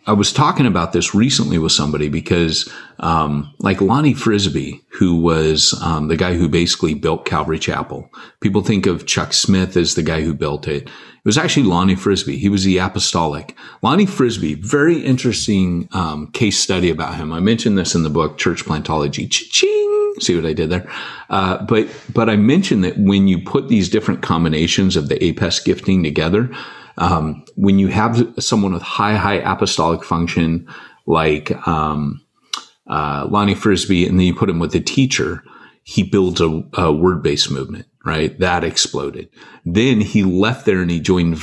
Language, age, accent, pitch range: English, 40-59, American, 80-100 Hz